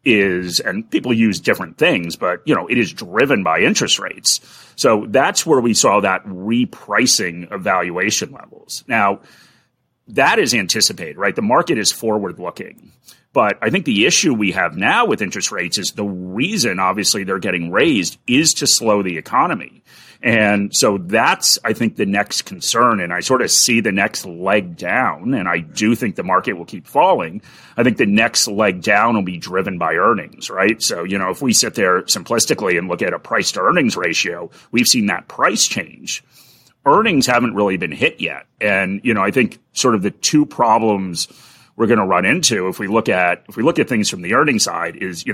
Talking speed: 200 wpm